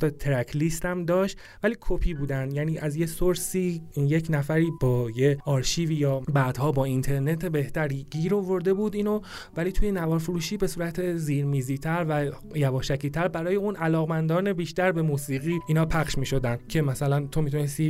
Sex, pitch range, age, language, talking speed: male, 140-180 Hz, 30-49, Persian, 160 wpm